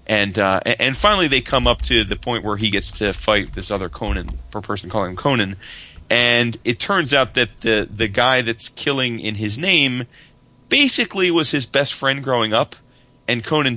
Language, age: English, 30-49